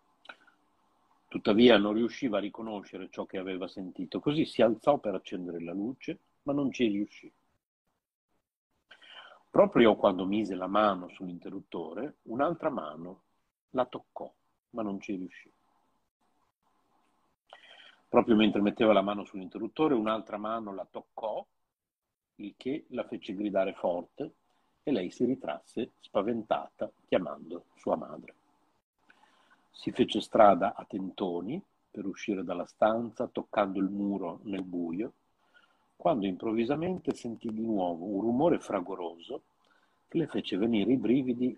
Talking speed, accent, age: 125 wpm, native, 50-69